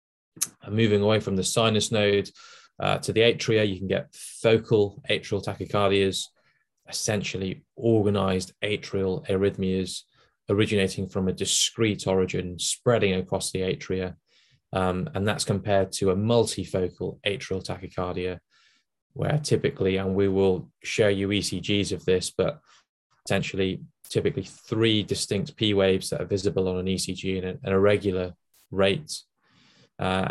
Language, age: English, 20-39